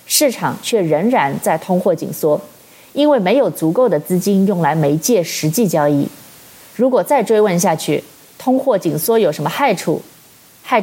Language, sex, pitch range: Chinese, female, 170-235 Hz